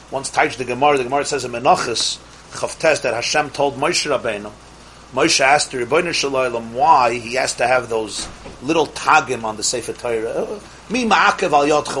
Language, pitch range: English, 130-195 Hz